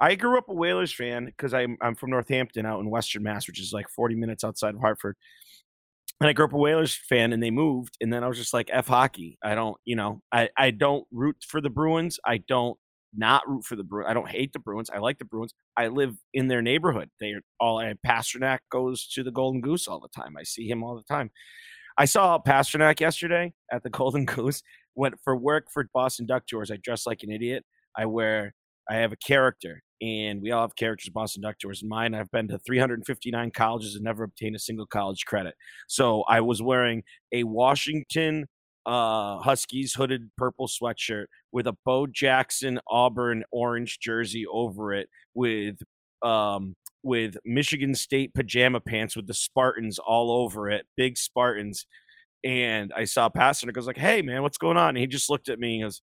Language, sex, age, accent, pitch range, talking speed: English, male, 30-49, American, 110-135 Hz, 210 wpm